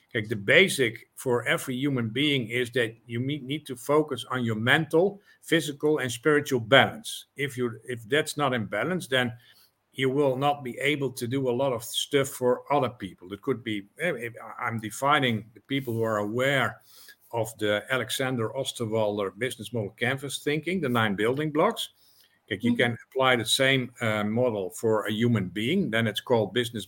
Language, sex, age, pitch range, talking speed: English, male, 50-69, 110-140 Hz, 175 wpm